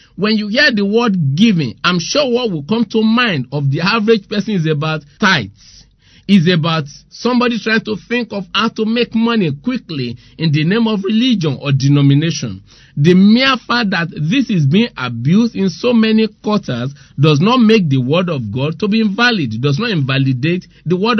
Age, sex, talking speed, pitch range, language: 50-69, male, 185 wpm, 150-230 Hz, English